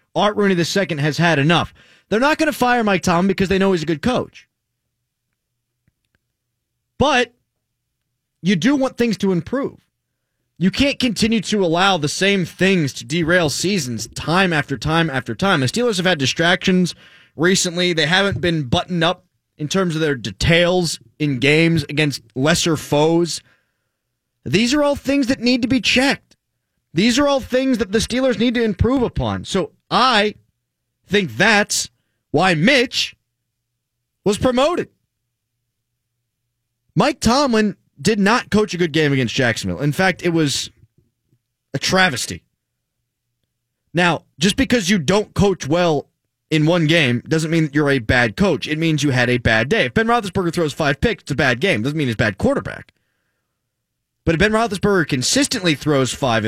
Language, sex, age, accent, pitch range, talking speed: English, male, 30-49, American, 125-200 Hz, 165 wpm